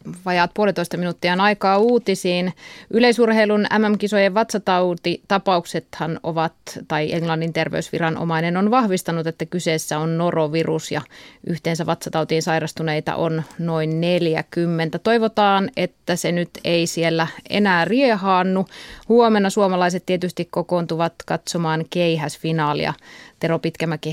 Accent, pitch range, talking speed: native, 165-210 Hz, 100 wpm